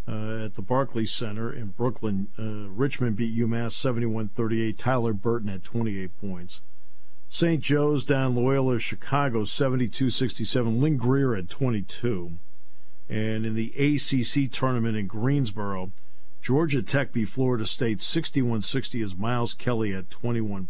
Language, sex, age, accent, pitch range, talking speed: English, male, 50-69, American, 105-130 Hz, 130 wpm